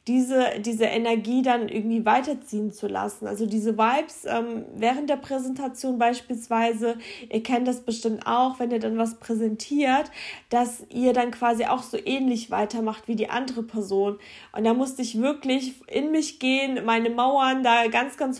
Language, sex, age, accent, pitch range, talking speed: German, female, 20-39, German, 225-260 Hz, 165 wpm